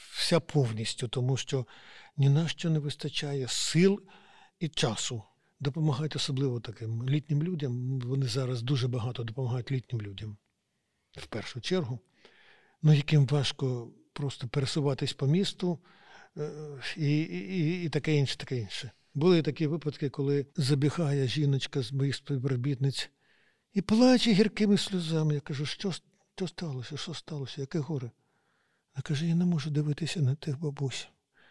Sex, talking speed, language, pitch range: male, 135 wpm, Ukrainian, 130-155 Hz